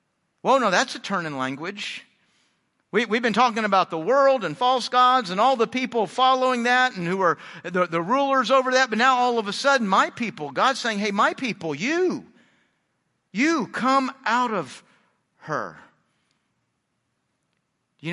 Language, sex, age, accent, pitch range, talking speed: English, male, 50-69, American, 155-215 Hz, 165 wpm